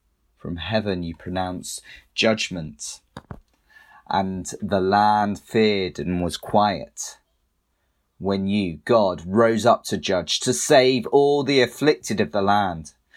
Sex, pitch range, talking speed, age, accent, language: male, 95-130 Hz, 125 wpm, 30-49, British, English